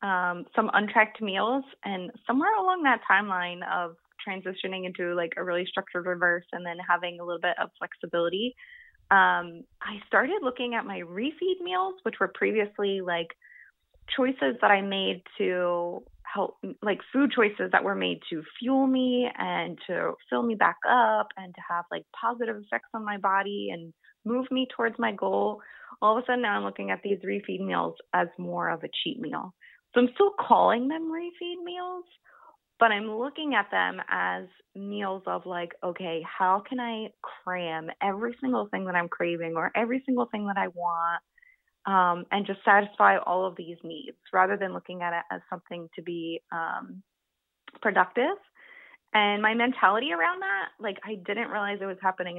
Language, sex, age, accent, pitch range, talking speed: English, female, 20-39, American, 175-235 Hz, 180 wpm